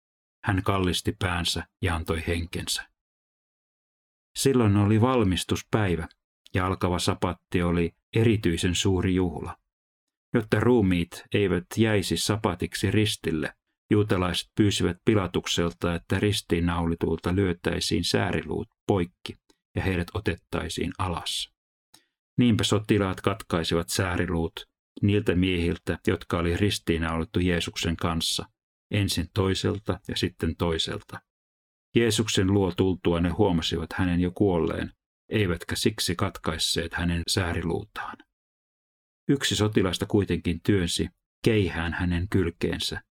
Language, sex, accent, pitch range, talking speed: Finnish, male, native, 85-100 Hz, 95 wpm